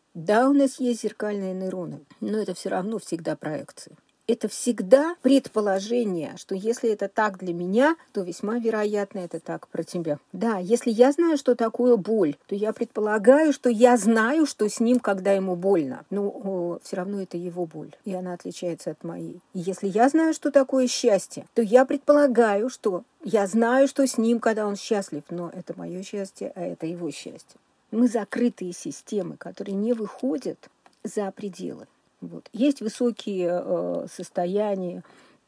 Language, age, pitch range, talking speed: Russian, 40-59, 180-240 Hz, 165 wpm